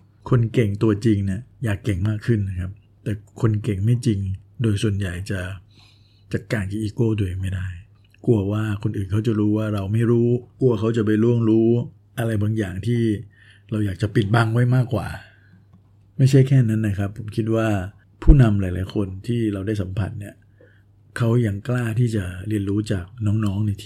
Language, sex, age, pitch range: Thai, male, 60-79, 100-115 Hz